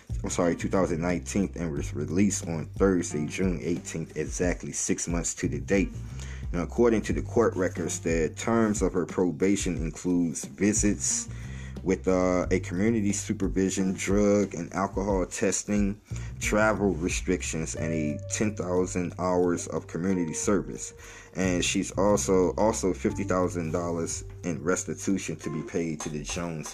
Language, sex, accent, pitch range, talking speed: English, male, American, 85-105 Hz, 135 wpm